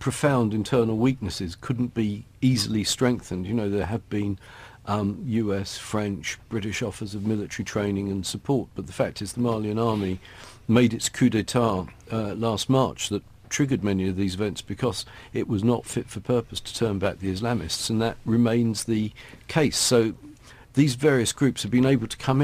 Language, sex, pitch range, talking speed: English, male, 100-130 Hz, 180 wpm